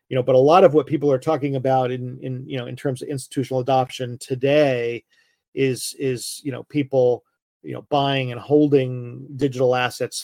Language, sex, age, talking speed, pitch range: English, male, 40-59, 195 wpm, 120-140 Hz